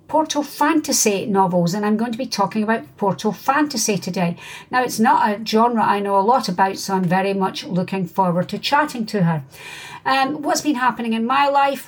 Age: 60-79